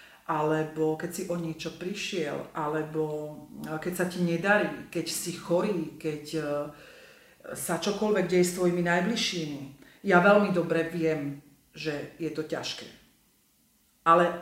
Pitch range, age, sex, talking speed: 160-195 Hz, 40-59, female, 125 wpm